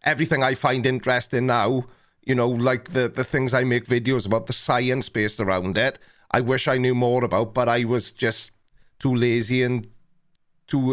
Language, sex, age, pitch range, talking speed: English, male, 30-49, 120-140 Hz, 185 wpm